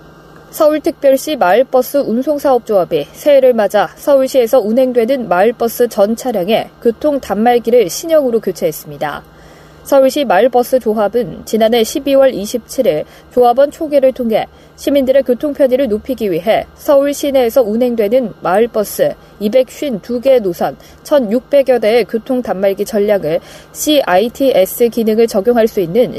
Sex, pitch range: female, 220-275 Hz